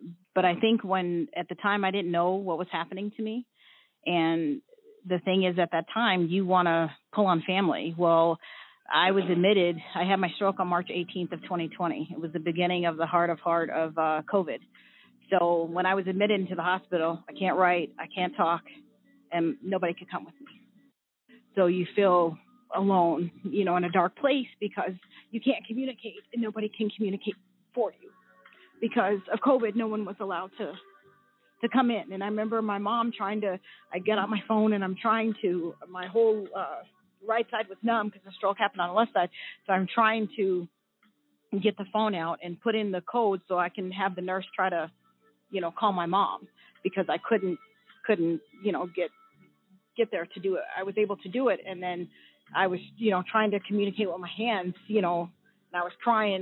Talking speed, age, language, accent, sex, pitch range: 210 wpm, 40-59, English, American, female, 175-215 Hz